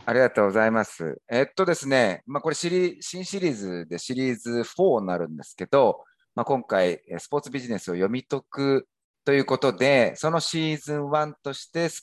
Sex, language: male, Japanese